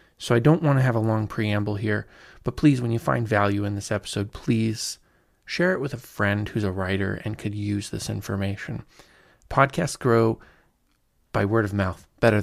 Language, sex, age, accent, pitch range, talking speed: English, male, 20-39, American, 105-140 Hz, 195 wpm